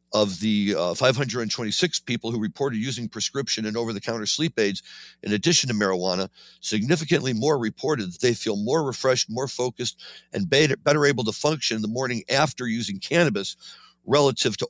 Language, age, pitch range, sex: English, 60-79, 95-120 Hz, male